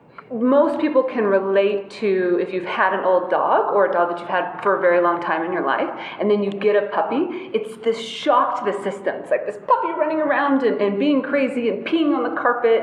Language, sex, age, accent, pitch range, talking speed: English, female, 30-49, American, 185-255 Hz, 245 wpm